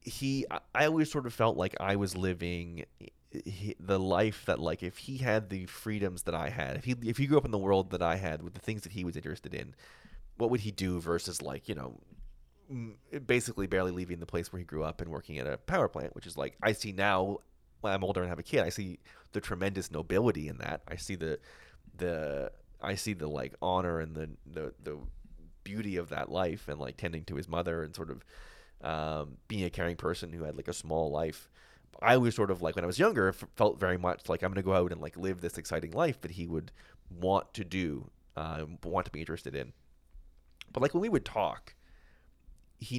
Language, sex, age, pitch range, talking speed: English, male, 30-49, 80-100 Hz, 230 wpm